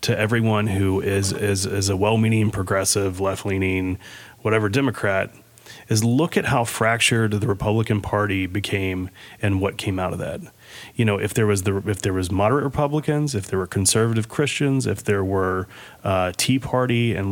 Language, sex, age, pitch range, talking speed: English, male, 30-49, 100-115 Hz, 175 wpm